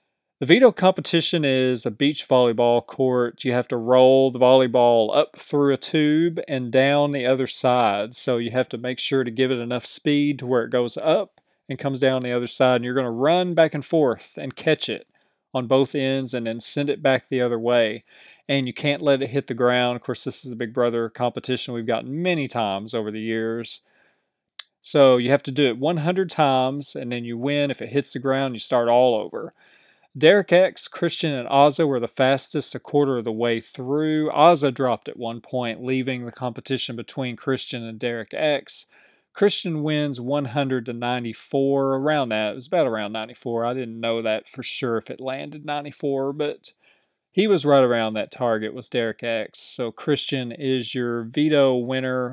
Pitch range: 120-145 Hz